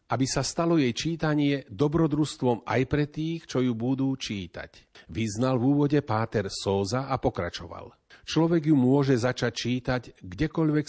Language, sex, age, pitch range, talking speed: Slovak, male, 40-59, 110-145 Hz, 145 wpm